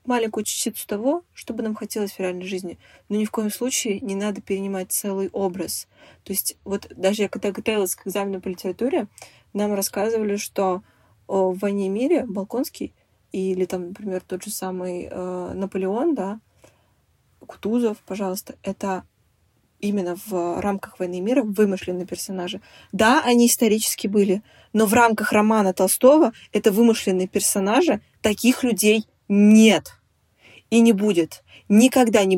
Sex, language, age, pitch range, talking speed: female, Russian, 20-39, 185-225 Hz, 145 wpm